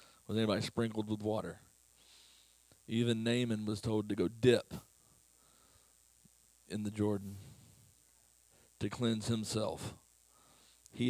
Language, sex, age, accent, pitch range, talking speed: English, male, 40-59, American, 100-115 Hz, 105 wpm